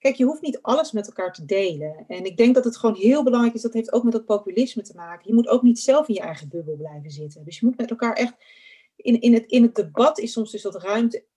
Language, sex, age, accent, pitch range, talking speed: Dutch, female, 40-59, Dutch, 180-235 Hz, 285 wpm